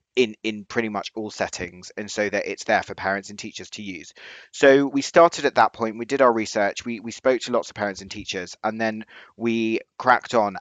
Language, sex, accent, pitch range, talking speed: English, male, British, 100-115 Hz, 230 wpm